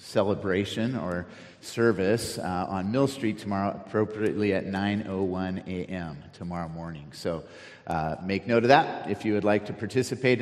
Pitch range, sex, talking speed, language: 95-125 Hz, male, 150 wpm, English